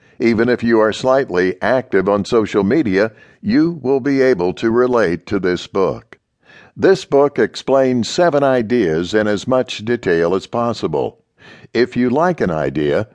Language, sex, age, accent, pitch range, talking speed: English, male, 60-79, American, 110-140 Hz, 155 wpm